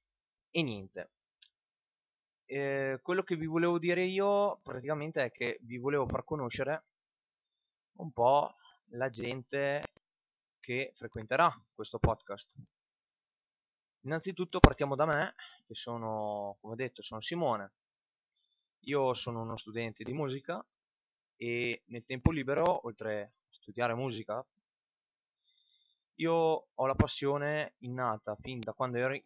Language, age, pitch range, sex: Italian, 20-39, 115-145 Hz, male